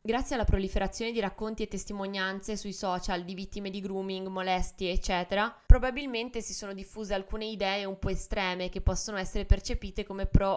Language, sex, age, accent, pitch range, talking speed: Italian, female, 20-39, native, 185-210 Hz, 170 wpm